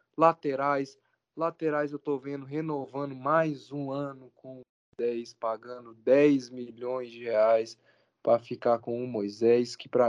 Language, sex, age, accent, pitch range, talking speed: Portuguese, male, 10-29, Brazilian, 120-155 Hz, 135 wpm